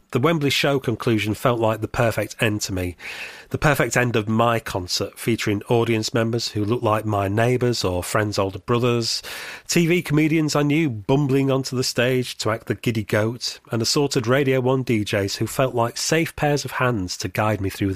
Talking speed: 195 wpm